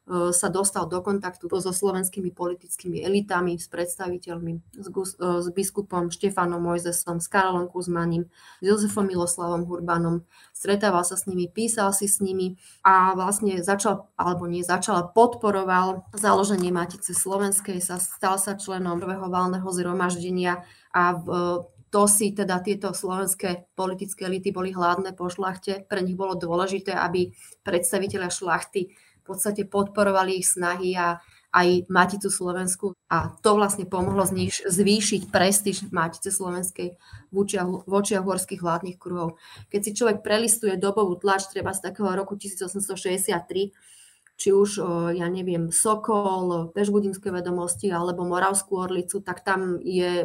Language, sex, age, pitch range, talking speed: Slovak, female, 30-49, 175-195 Hz, 135 wpm